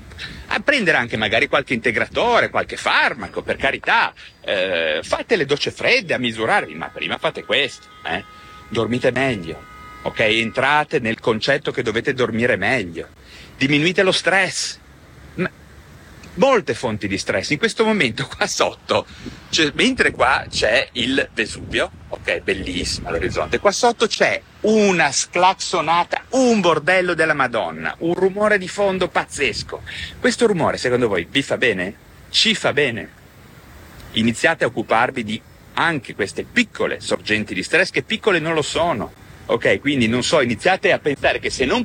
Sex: male